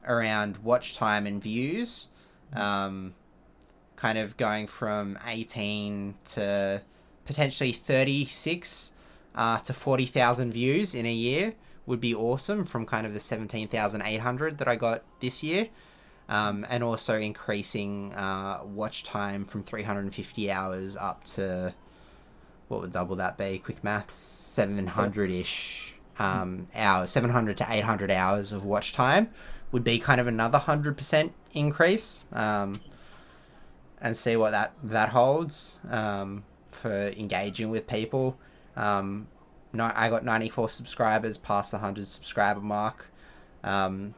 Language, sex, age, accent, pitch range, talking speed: English, male, 20-39, Australian, 100-125 Hz, 145 wpm